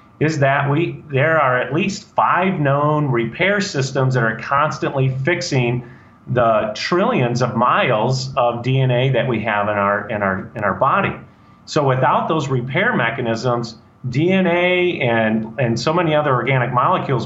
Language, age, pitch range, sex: English, 40-59, 115-150 Hz, male